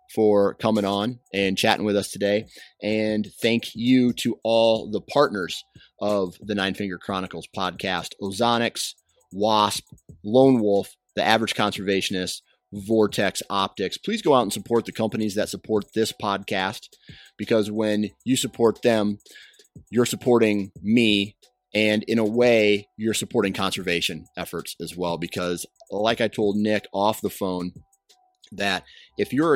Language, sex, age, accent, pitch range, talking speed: English, male, 30-49, American, 100-115 Hz, 140 wpm